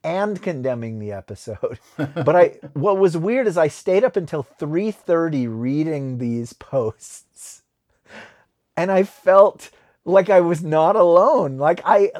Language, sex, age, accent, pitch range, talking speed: English, male, 40-59, American, 130-205 Hz, 140 wpm